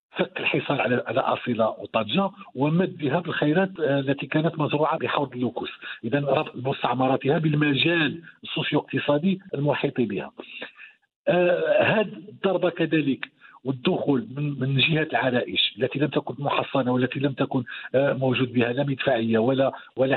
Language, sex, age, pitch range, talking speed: Arabic, male, 50-69, 130-160 Hz, 120 wpm